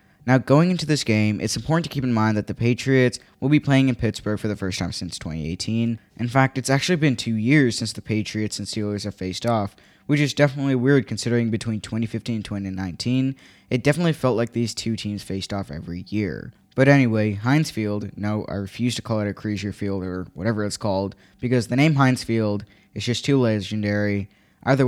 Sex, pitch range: male, 105-125 Hz